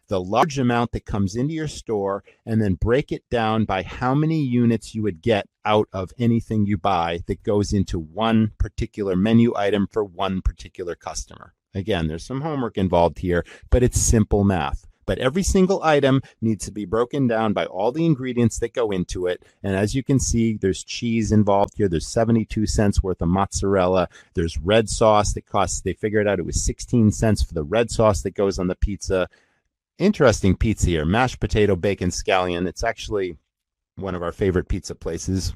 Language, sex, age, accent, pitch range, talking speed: English, male, 40-59, American, 95-120 Hz, 190 wpm